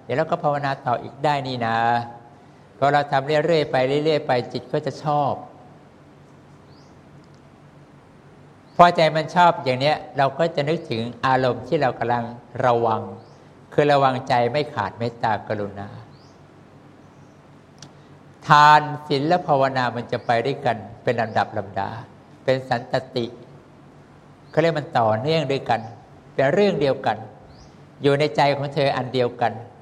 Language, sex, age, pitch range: English, male, 60-79, 120-145 Hz